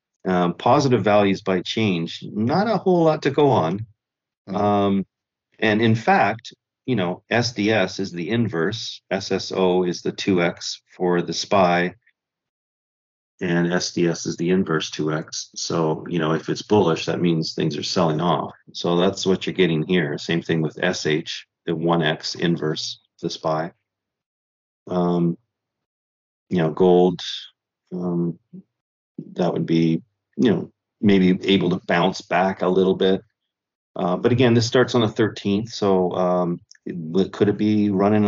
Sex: male